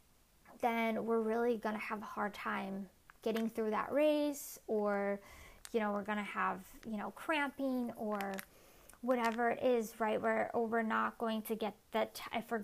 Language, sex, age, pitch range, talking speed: English, female, 20-39, 210-240 Hz, 175 wpm